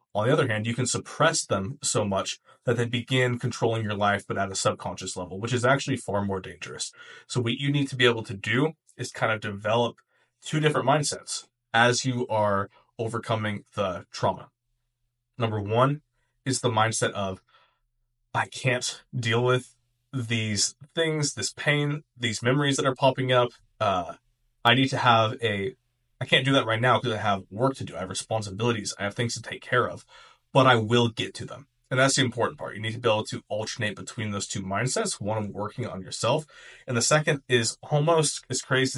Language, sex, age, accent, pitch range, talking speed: English, male, 20-39, American, 110-130 Hz, 205 wpm